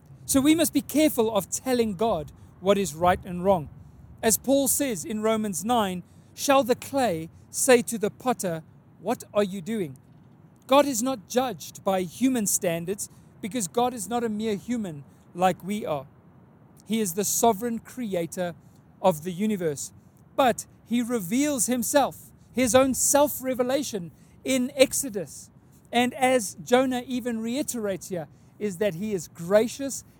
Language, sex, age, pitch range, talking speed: English, male, 40-59, 175-235 Hz, 150 wpm